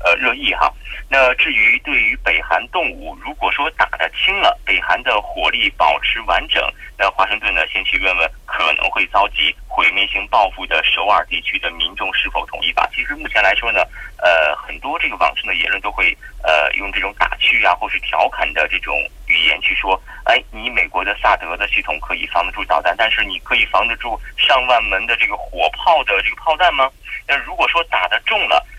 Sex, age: male, 30-49